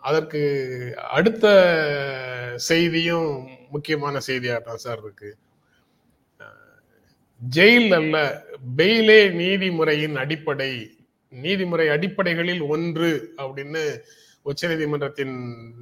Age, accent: 30-49, native